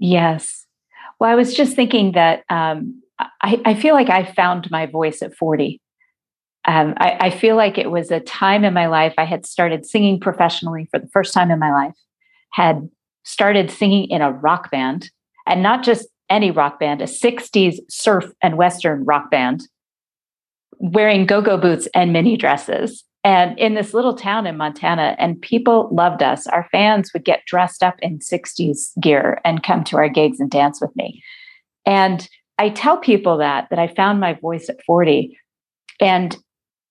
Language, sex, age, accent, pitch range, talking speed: English, female, 40-59, American, 160-220 Hz, 180 wpm